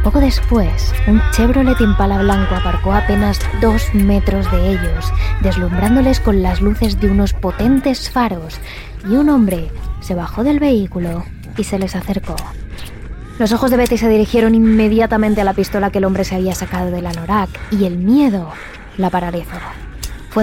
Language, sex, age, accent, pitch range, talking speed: Spanish, female, 20-39, Spanish, 175-230 Hz, 165 wpm